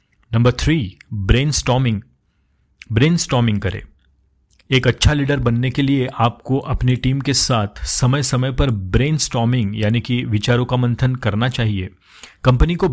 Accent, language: native, Hindi